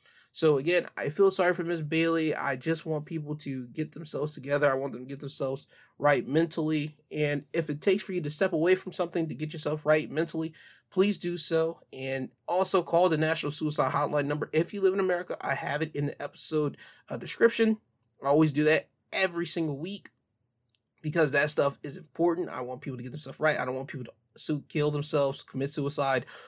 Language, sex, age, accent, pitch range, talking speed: English, male, 20-39, American, 135-160 Hz, 205 wpm